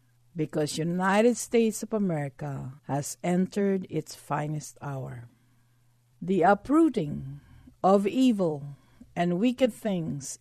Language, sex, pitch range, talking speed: English, female, 140-205 Hz, 100 wpm